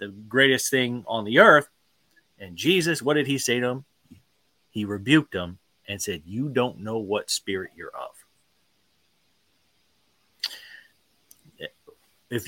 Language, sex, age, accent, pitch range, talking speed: English, male, 30-49, American, 110-145 Hz, 130 wpm